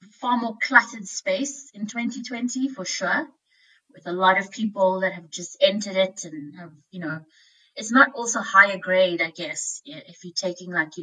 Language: English